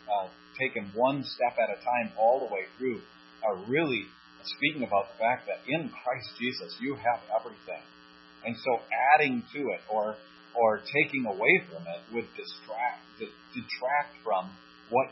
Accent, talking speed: American, 165 wpm